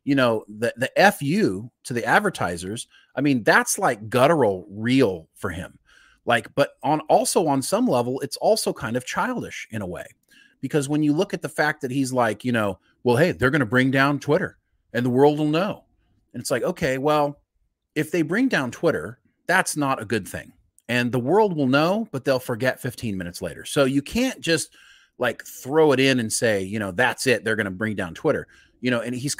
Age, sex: 30-49, male